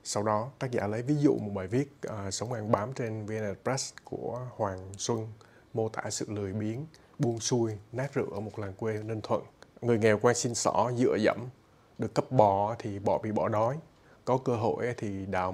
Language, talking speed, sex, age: Vietnamese, 210 wpm, male, 20-39